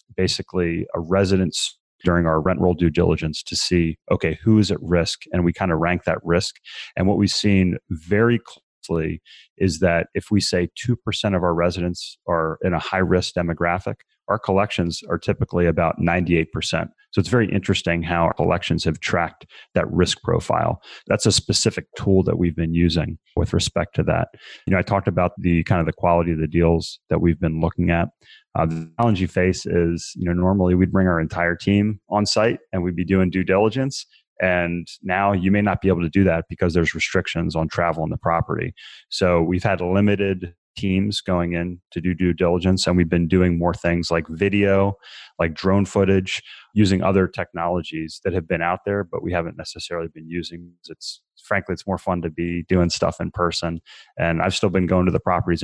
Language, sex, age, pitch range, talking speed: English, male, 30-49, 85-95 Hz, 205 wpm